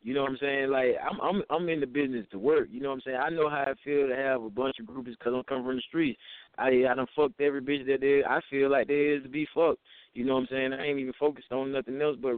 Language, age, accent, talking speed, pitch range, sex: English, 20-39, American, 315 wpm, 120-140 Hz, male